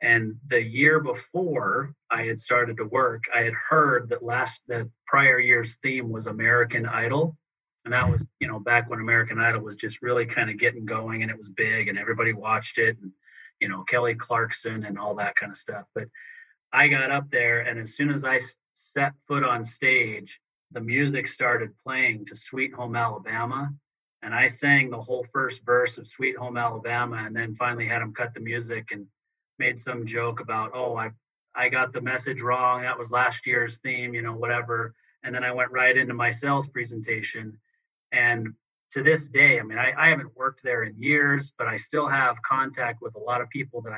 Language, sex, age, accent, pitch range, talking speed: English, male, 30-49, American, 115-140 Hz, 205 wpm